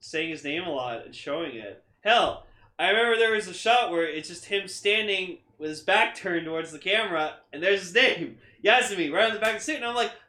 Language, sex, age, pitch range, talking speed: English, male, 20-39, 135-195 Hz, 245 wpm